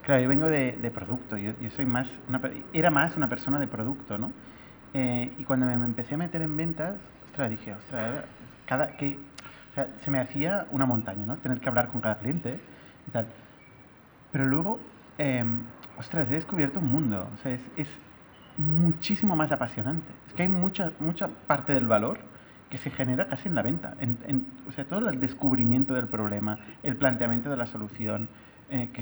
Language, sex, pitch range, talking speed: Spanish, male, 120-145 Hz, 190 wpm